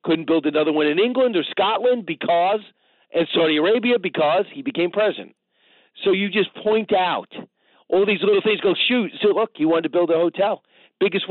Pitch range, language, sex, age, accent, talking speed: 175-245 Hz, English, male, 50-69, American, 190 wpm